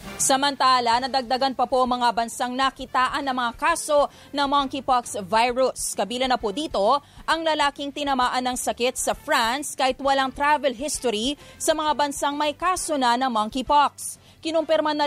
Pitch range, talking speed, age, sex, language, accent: 240-290 Hz, 150 wpm, 20-39, female, English, Filipino